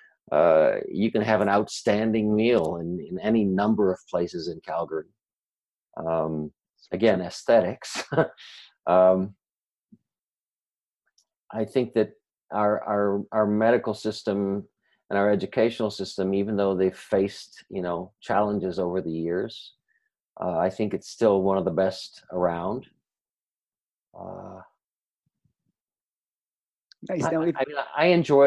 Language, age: English, 50-69